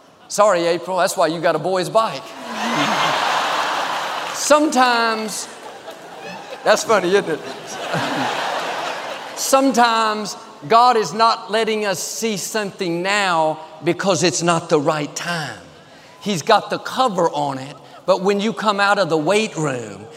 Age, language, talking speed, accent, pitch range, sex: 50-69, English, 130 wpm, American, 165-220 Hz, male